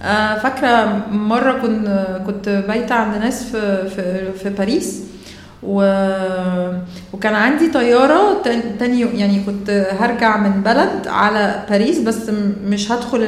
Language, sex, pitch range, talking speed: Arabic, female, 195-250 Hz, 110 wpm